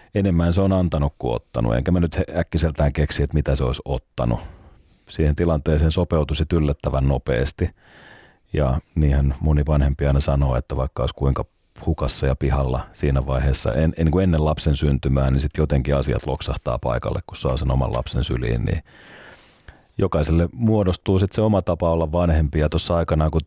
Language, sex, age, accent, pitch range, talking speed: Finnish, male, 30-49, native, 70-85 Hz, 175 wpm